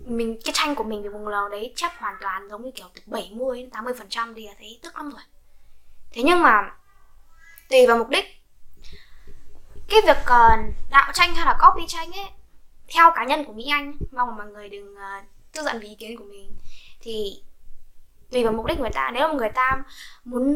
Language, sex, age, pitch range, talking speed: Vietnamese, female, 10-29, 220-310 Hz, 205 wpm